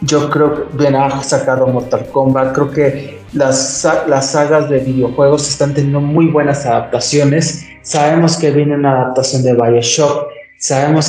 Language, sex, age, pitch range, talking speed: Spanish, male, 30-49, 130-160 Hz, 155 wpm